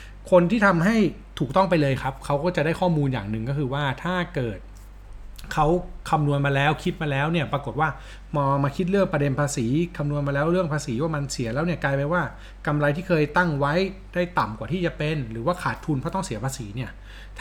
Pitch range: 125-170 Hz